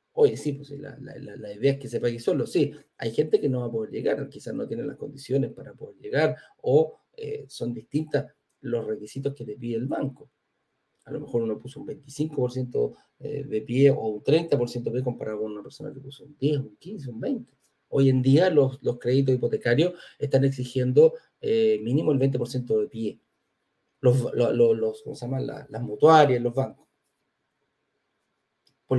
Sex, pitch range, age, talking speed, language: male, 125-150 Hz, 40-59, 195 wpm, Spanish